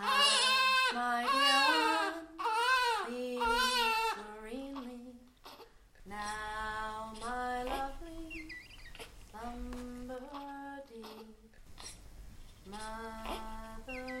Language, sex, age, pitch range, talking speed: English, female, 30-49, 185-250 Hz, 40 wpm